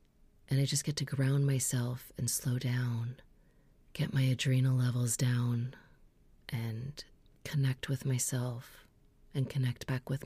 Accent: American